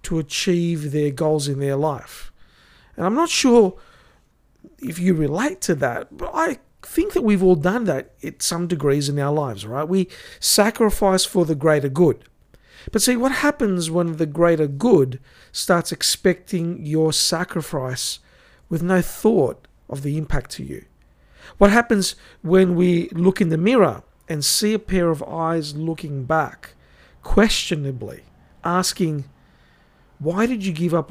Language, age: English, 50-69